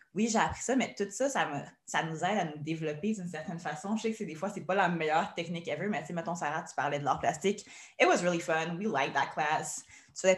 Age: 20-39